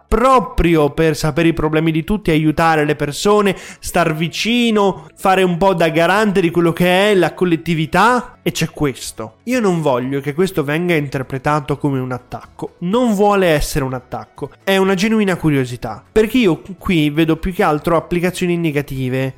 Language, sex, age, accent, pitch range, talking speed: Italian, male, 20-39, native, 145-180 Hz, 165 wpm